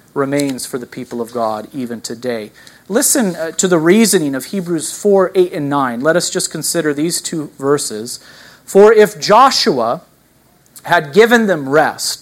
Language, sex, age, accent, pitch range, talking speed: English, male, 40-59, American, 135-205 Hz, 155 wpm